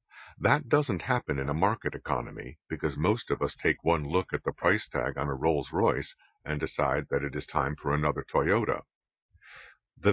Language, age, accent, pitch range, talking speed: English, 50-69, American, 75-105 Hz, 185 wpm